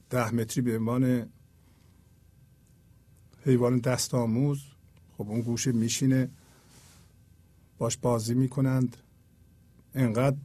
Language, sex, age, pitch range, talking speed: Persian, male, 50-69, 105-135 Hz, 85 wpm